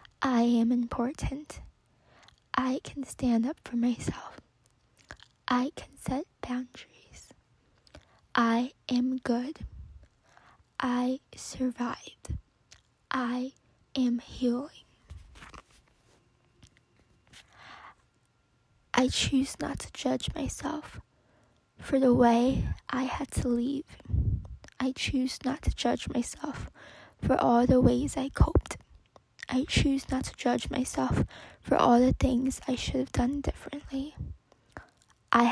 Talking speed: 105 wpm